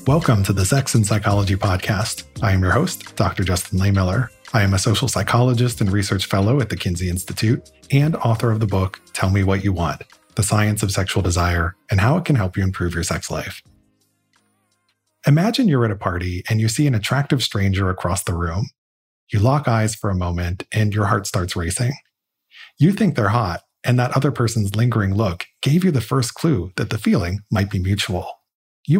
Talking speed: 205 wpm